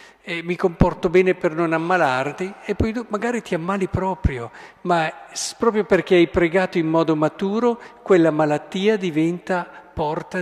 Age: 50-69